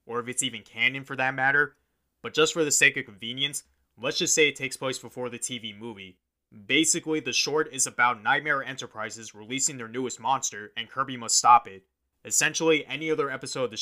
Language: English